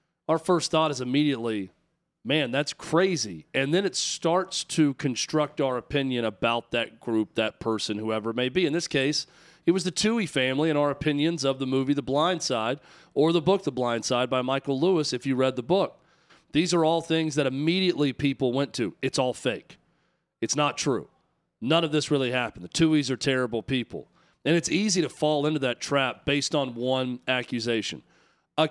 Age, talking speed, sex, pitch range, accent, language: 40-59, 195 wpm, male, 120-155 Hz, American, English